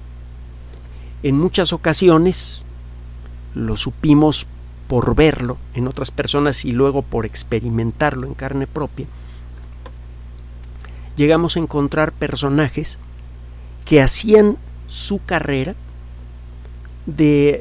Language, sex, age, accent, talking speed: Spanish, male, 50-69, Mexican, 90 wpm